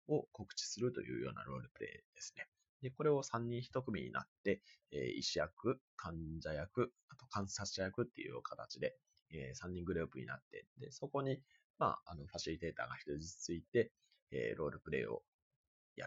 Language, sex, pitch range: Japanese, male, 100-155 Hz